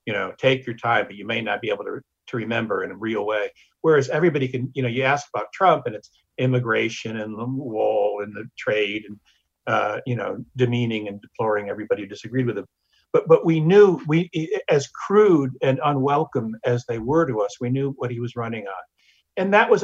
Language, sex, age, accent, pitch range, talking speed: English, male, 60-79, American, 120-165 Hz, 220 wpm